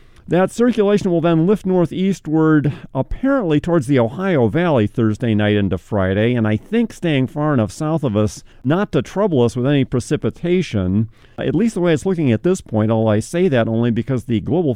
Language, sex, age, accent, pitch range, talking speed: English, male, 50-69, American, 110-165 Hz, 195 wpm